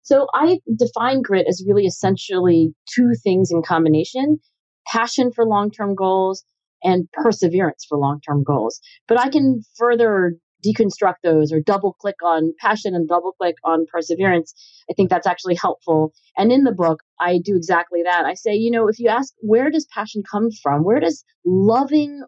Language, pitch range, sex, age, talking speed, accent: English, 170-235 Hz, female, 30-49, 165 wpm, American